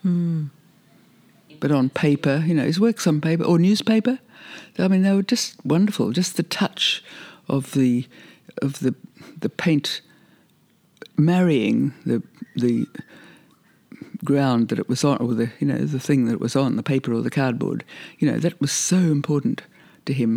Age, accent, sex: 60-79, British, female